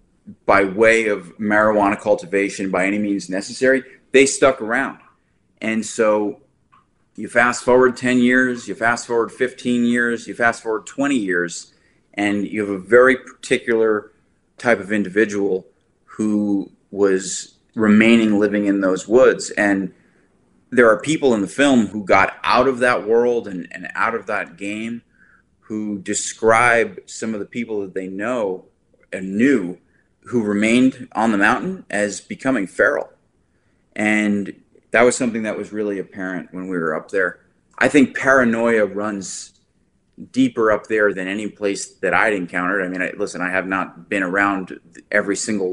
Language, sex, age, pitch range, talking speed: English, male, 30-49, 100-120 Hz, 155 wpm